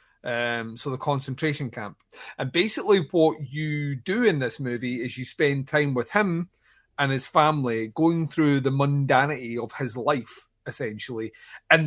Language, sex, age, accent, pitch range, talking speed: English, male, 30-49, British, 125-155 Hz, 155 wpm